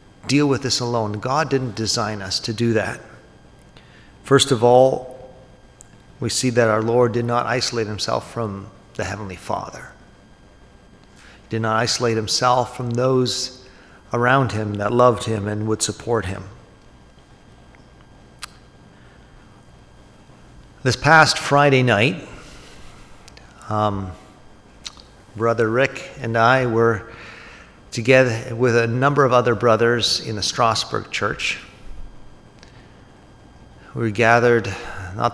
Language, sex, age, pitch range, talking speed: English, male, 40-59, 105-130 Hz, 115 wpm